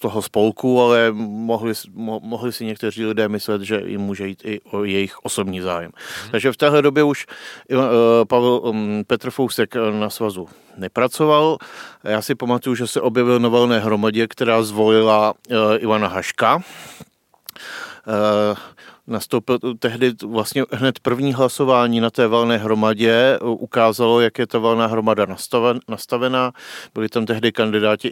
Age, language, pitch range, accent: 40-59, Czech, 105-120 Hz, native